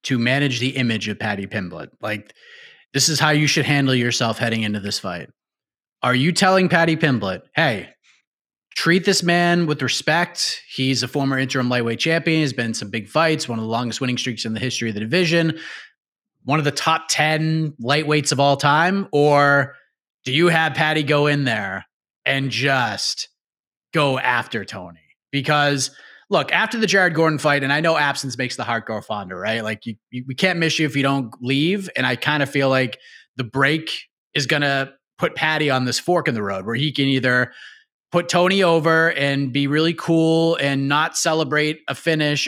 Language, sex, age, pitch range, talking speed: English, male, 30-49, 125-165 Hz, 195 wpm